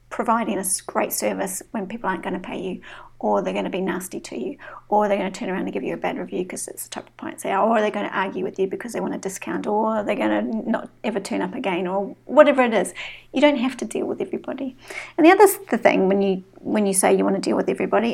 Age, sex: 40-59, female